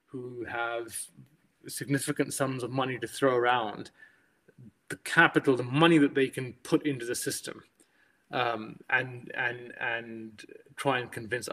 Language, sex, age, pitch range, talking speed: English, male, 30-49, 125-150 Hz, 140 wpm